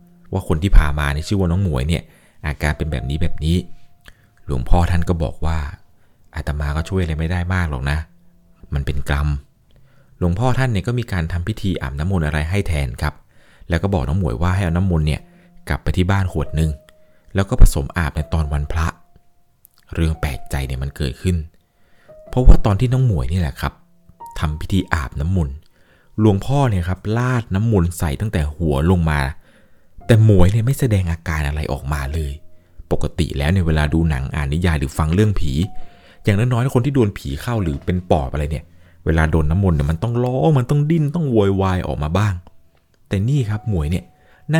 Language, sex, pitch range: Thai, male, 75-105 Hz